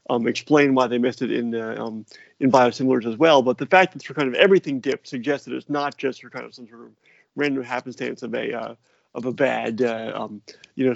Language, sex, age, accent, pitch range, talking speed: English, male, 30-49, American, 115-135 Hz, 245 wpm